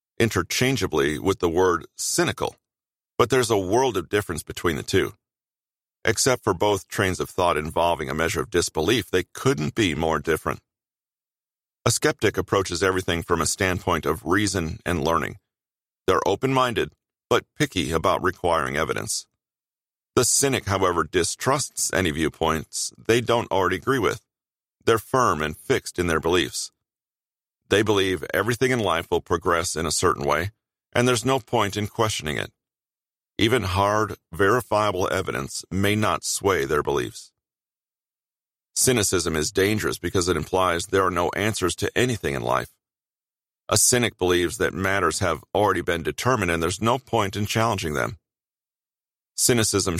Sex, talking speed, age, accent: male, 150 wpm, 40-59, American